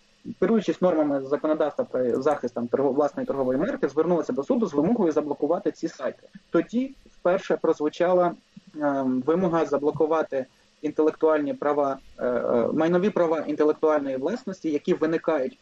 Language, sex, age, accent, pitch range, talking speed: Ukrainian, male, 20-39, native, 150-195 Hz, 110 wpm